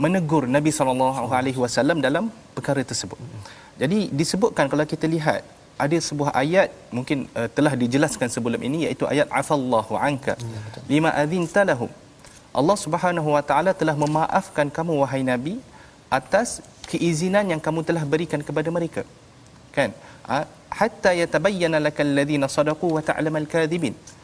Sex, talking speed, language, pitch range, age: male, 130 wpm, Malayalam, 135-175 Hz, 30-49